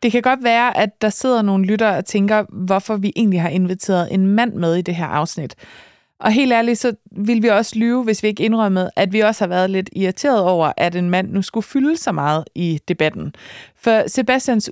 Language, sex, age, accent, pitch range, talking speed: Danish, female, 30-49, native, 185-230 Hz, 225 wpm